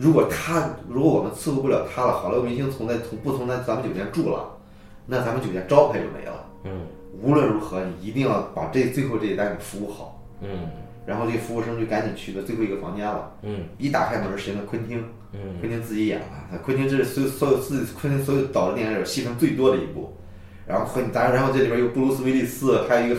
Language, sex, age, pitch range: Chinese, male, 20-39, 100-135 Hz